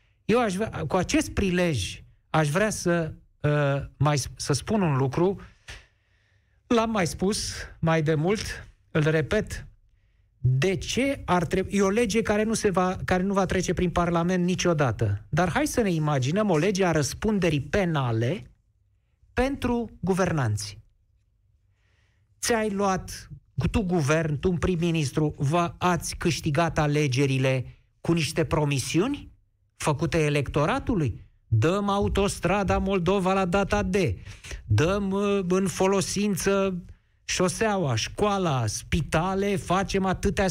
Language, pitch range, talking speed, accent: Romanian, 140-195 Hz, 120 wpm, native